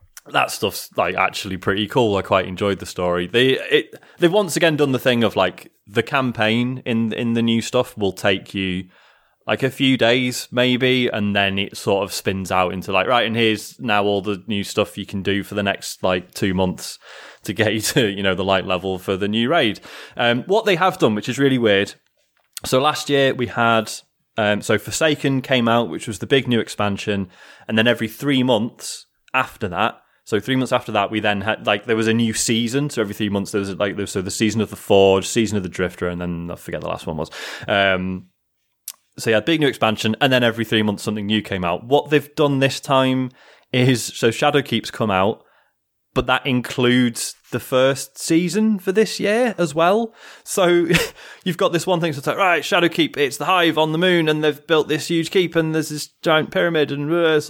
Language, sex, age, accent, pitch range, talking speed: English, male, 20-39, British, 105-145 Hz, 225 wpm